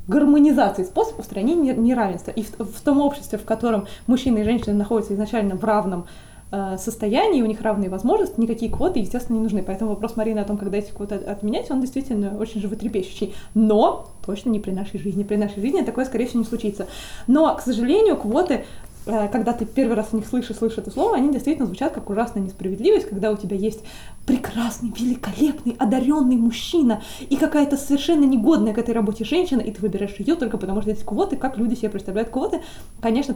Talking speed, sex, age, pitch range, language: 195 wpm, female, 20-39, 205-255 Hz, Russian